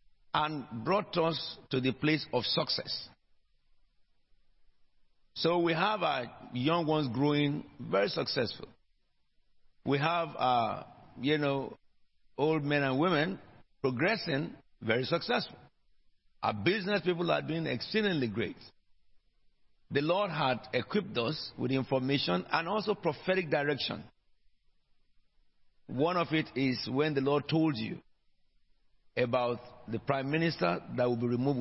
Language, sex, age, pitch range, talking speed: English, male, 50-69, 125-165 Hz, 120 wpm